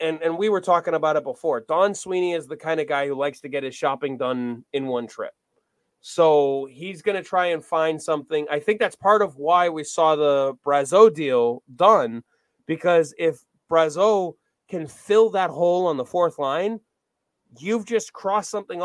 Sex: male